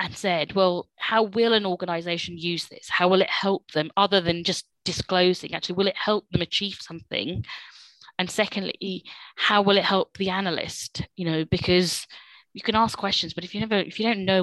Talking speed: 200 wpm